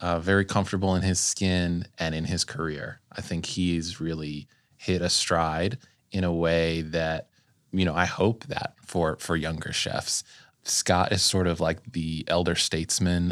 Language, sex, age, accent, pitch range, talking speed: English, male, 20-39, American, 85-100 Hz, 170 wpm